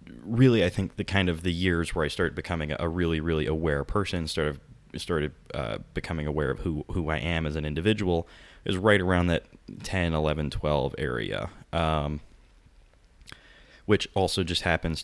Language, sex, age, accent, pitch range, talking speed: English, male, 20-39, American, 75-90 Hz, 170 wpm